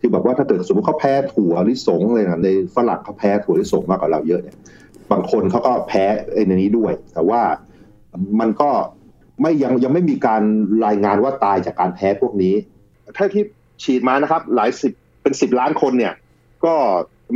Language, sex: Thai, male